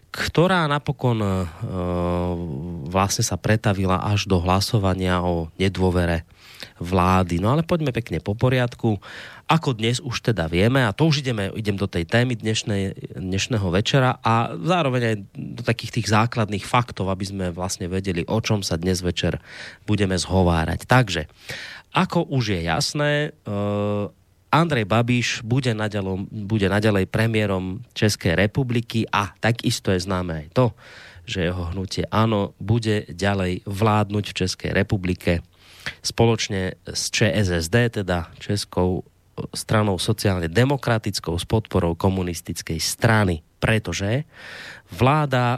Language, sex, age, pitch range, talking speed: Slovak, male, 30-49, 90-115 Hz, 125 wpm